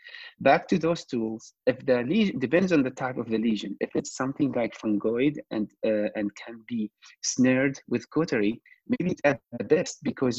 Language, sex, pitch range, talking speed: English, male, 115-150 Hz, 190 wpm